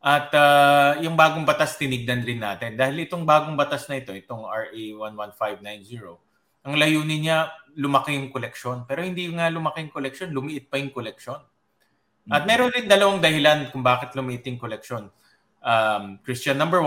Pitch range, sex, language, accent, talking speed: 120-145 Hz, male, English, Filipino, 155 wpm